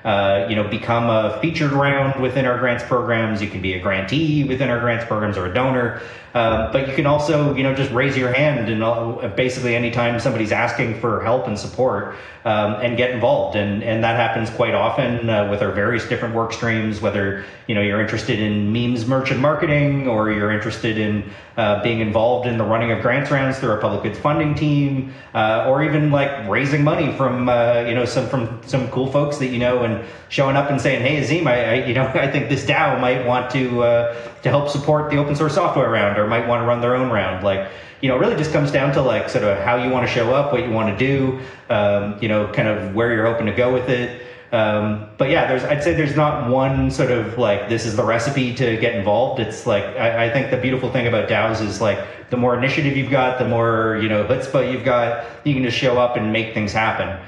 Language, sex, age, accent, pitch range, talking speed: English, male, 30-49, American, 110-135 Hz, 240 wpm